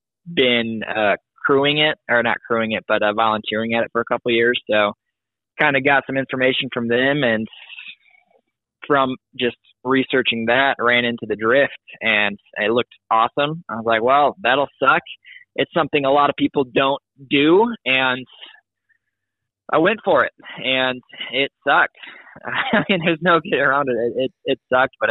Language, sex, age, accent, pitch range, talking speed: English, male, 20-39, American, 110-130 Hz, 175 wpm